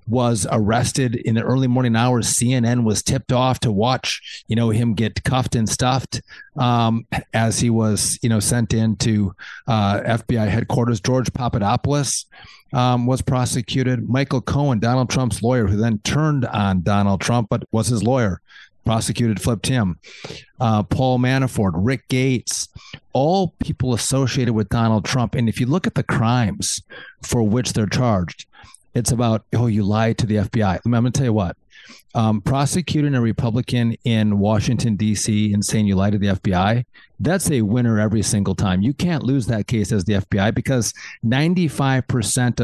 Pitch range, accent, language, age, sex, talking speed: 110-135 Hz, American, English, 30-49, male, 170 wpm